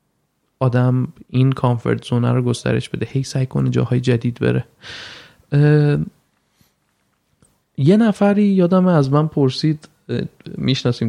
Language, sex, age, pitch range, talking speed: Persian, male, 20-39, 120-155 Hz, 115 wpm